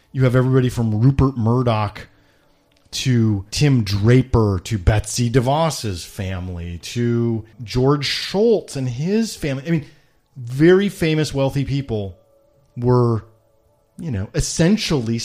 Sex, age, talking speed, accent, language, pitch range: male, 30-49, 115 wpm, American, English, 110-145 Hz